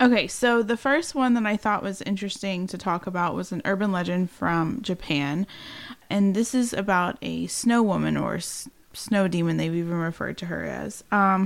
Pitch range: 175-210 Hz